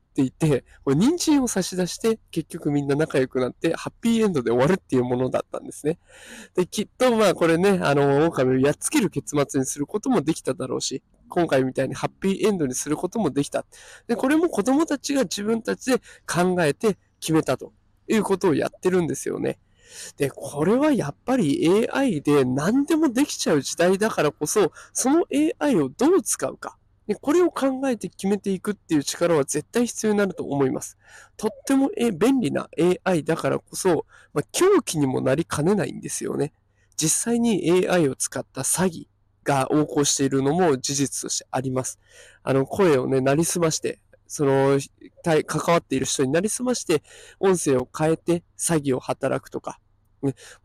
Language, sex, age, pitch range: Japanese, male, 20-39, 140-220 Hz